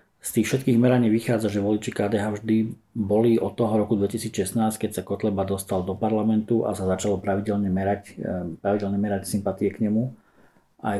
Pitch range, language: 95-115 Hz, Slovak